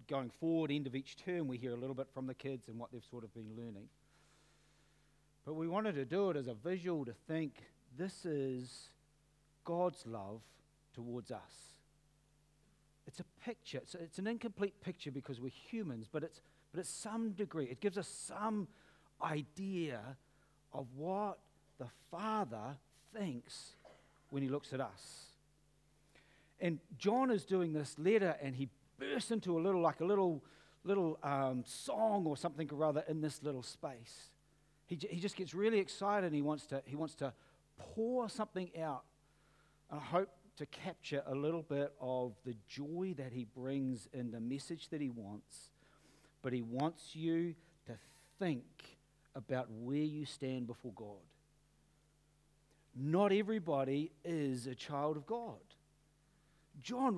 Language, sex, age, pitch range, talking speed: English, male, 50-69, 135-175 Hz, 160 wpm